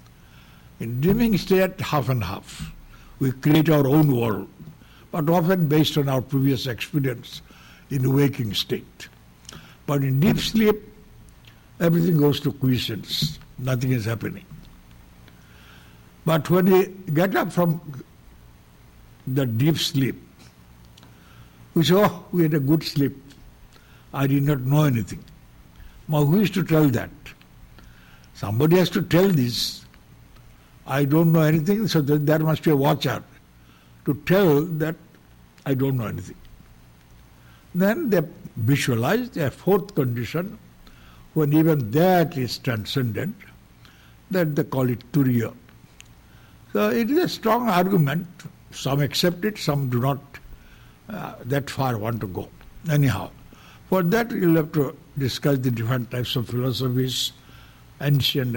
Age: 60-79